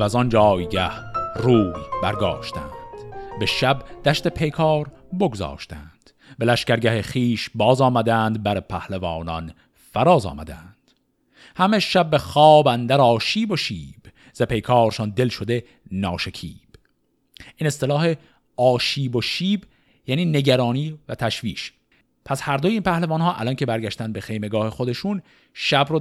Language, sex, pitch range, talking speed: Persian, male, 110-145 Hz, 120 wpm